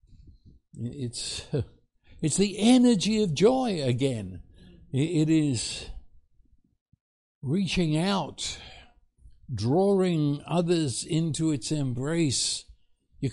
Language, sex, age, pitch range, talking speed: English, male, 60-79, 110-170 Hz, 75 wpm